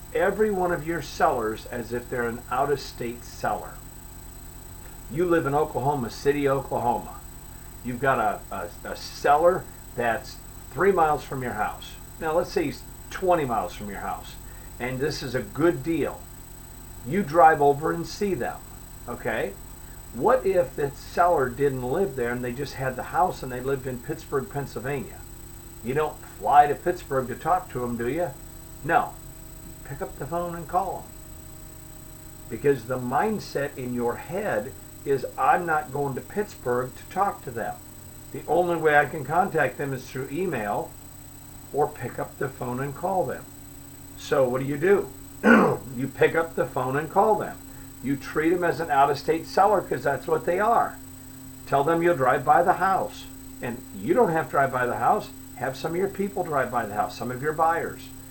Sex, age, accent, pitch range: male, 50-69, American, 120-165 Hz